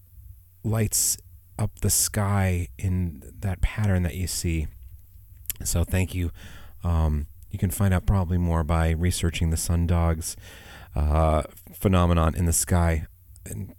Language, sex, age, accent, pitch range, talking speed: English, male, 30-49, American, 85-105 Hz, 135 wpm